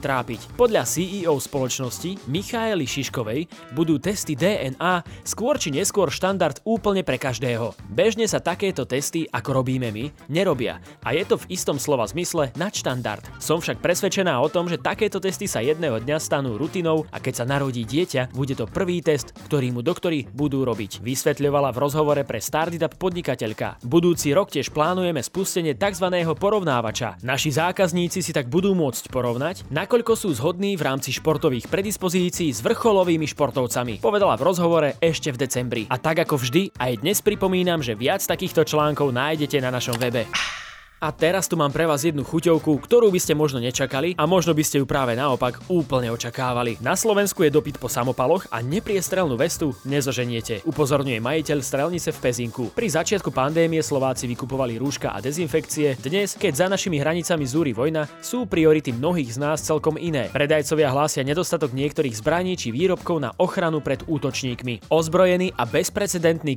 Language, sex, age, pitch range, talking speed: Slovak, male, 20-39, 130-175 Hz, 165 wpm